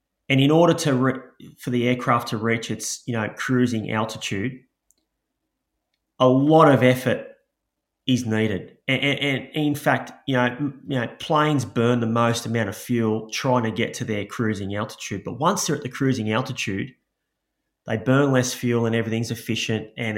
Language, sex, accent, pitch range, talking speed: English, male, Australian, 110-135 Hz, 175 wpm